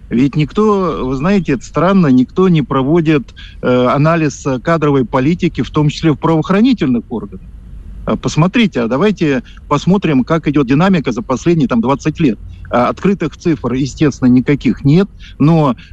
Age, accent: 50-69, native